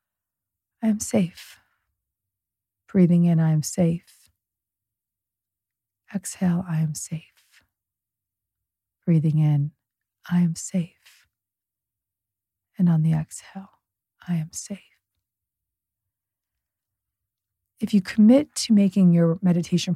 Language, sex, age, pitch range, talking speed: English, female, 40-59, 130-175 Hz, 95 wpm